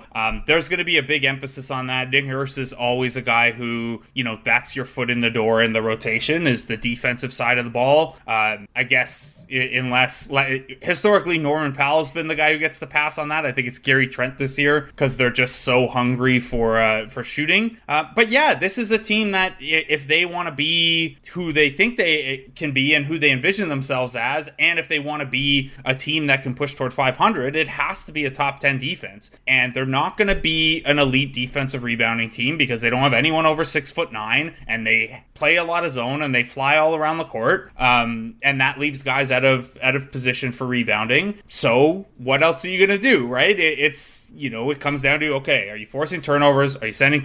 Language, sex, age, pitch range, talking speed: English, male, 20-39, 125-155 Hz, 235 wpm